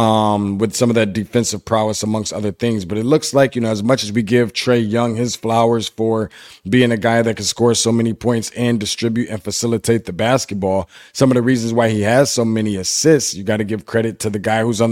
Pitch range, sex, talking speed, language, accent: 110-130 Hz, male, 245 wpm, English, American